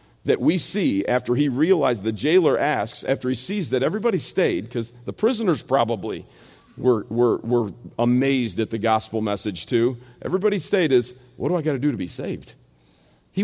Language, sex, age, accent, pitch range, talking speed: English, male, 50-69, American, 105-135 Hz, 185 wpm